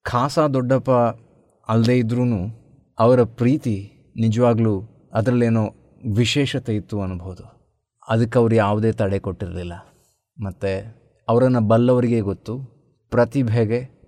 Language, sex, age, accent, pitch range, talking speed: Kannada, male, 30-49, native, 105-120 Hz, 90 wpm